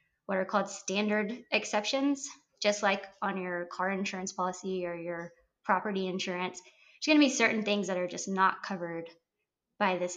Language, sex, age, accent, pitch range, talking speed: English, female, 20-39, American, 185-235 Hz, 170 wpm